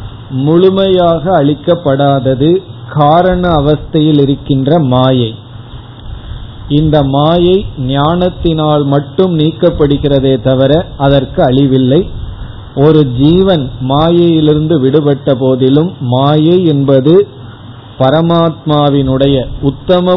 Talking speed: 70 wpm